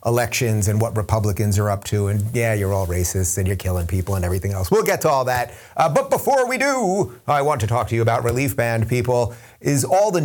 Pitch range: 110-145 Hz